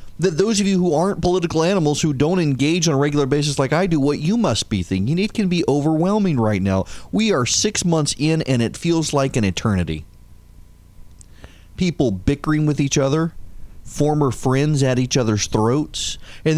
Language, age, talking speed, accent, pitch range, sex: English, 30-49, 190 wpm, American, 120-165 Hz, male